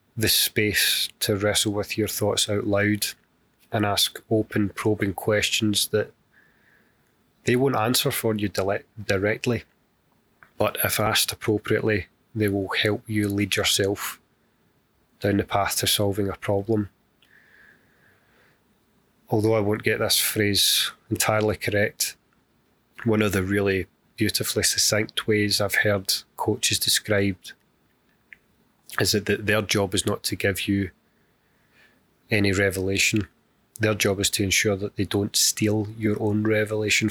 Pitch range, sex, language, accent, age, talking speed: 100-110 Hz, male, English, British, 30-49, 130 wpm